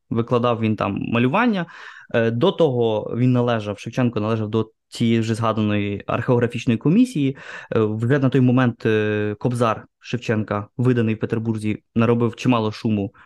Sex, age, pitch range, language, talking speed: male, 20-39, 115-135 Hz, Ukrainian, 125 wpm